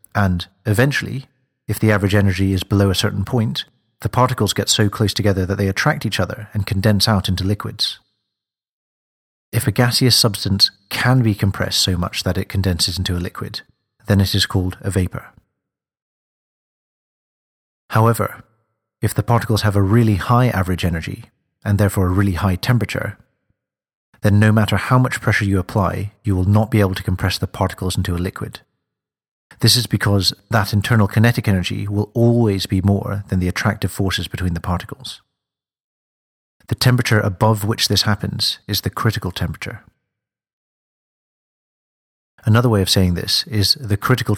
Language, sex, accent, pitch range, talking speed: English, male, British, 95-110 Hz, 160 wpm